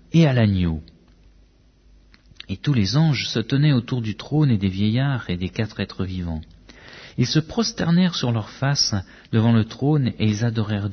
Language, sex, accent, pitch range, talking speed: French, male, French, 95-135 Hz, 175 wpm